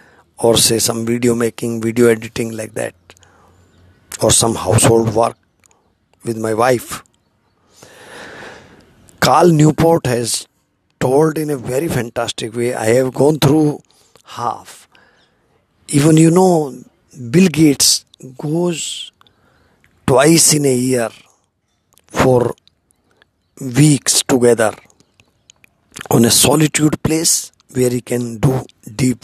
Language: English